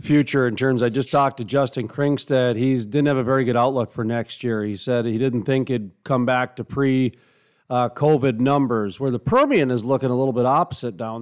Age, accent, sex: 40-59, American, male